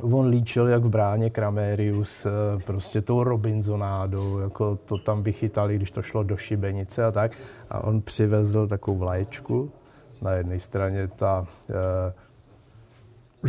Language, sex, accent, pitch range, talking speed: Czech, male, native, 110-130 Hz, 135 wpm